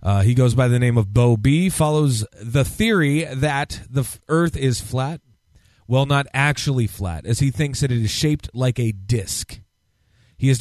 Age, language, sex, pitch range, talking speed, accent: 30-49, English, male, 105-145 Hz, 185 wpm, American